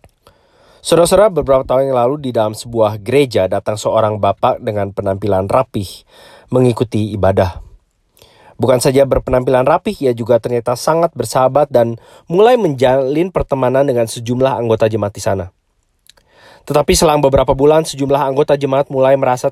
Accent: Indonesian